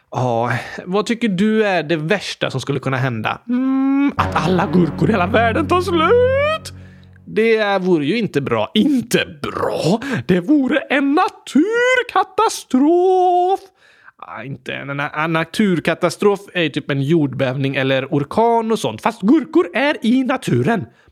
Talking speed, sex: 150 wpm, male